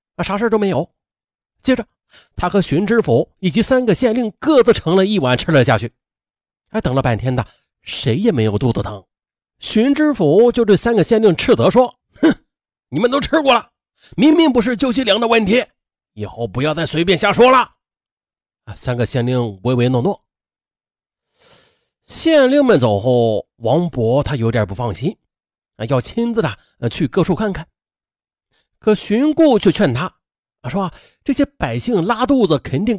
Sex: male